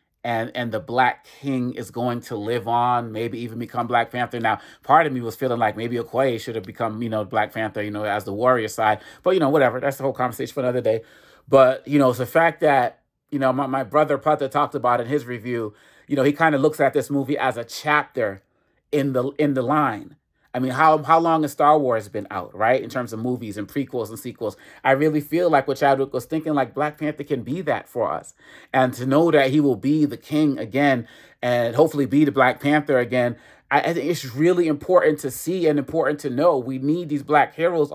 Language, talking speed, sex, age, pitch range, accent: English, 240 wpm, male, 30-49, 125-155 Hz, American